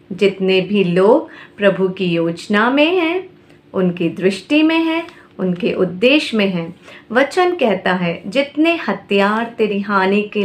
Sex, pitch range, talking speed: female, 185-245 Hz, 130 wpm